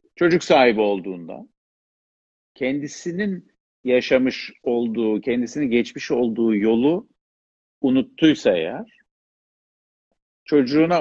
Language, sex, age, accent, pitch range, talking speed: Turkish, male, 50-69, native, 105-160 Hz, 70 wpm